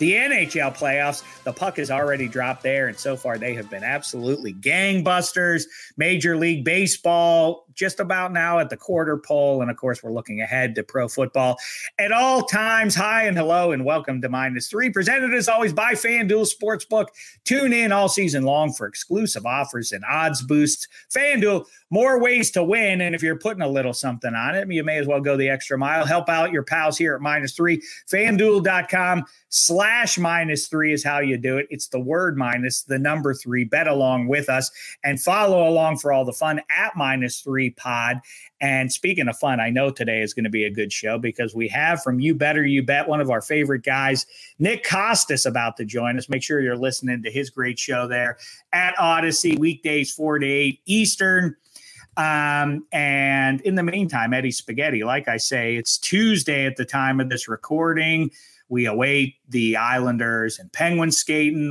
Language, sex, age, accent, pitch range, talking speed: English, male, 40-59, American, 130-175 Hz, 190 wpm